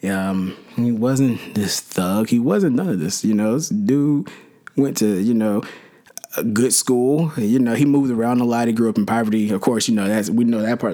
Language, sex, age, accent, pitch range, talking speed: English, male, 20-39, American, 100-125 Hz, 230 wpm